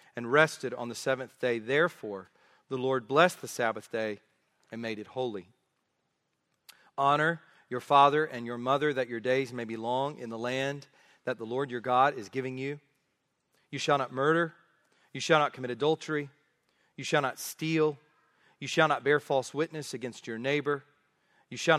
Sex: male